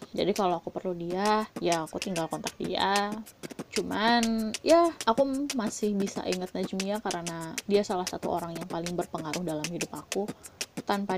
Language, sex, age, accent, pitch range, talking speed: Indonesian, female, 20-39, native, 175-225 Hz, 155 wpm